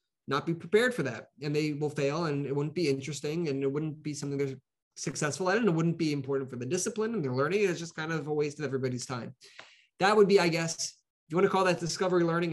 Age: 30-49